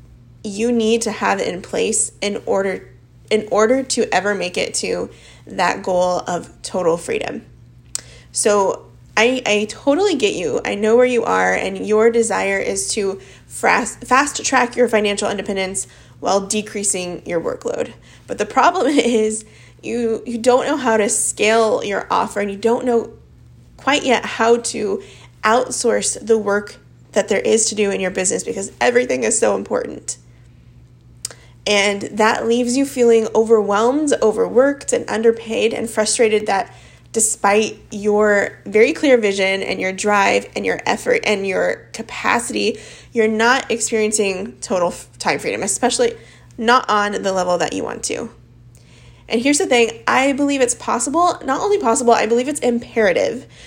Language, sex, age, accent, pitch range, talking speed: English, female, 20-39, American, 195-240 Hz, 155 wpm